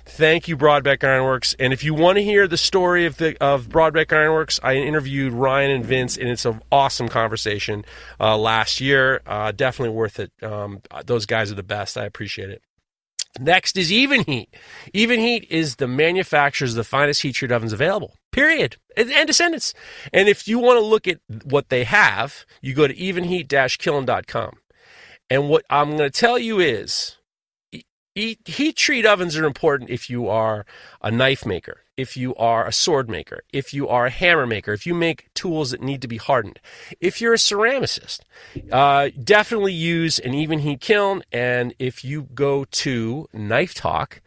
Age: 40-59